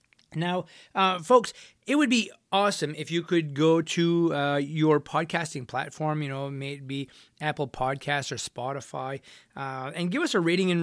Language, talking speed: English, 165 wpm